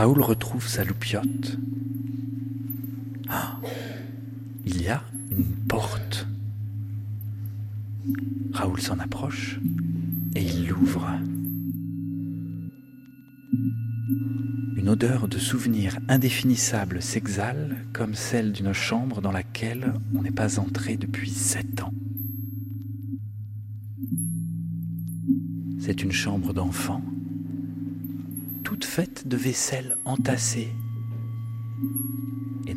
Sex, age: male, 40-59